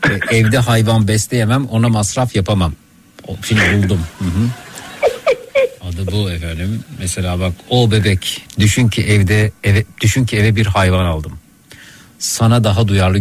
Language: Turkish